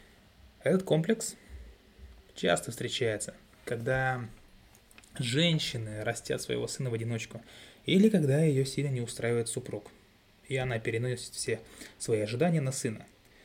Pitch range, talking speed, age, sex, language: 115-145 Hz, 115 wpm, 20-39, male, Russian